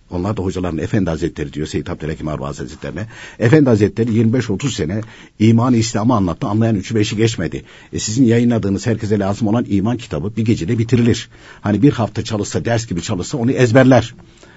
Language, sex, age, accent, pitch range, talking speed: Turkish, male, 60-79, native, 95-160 Hz, 170 wpm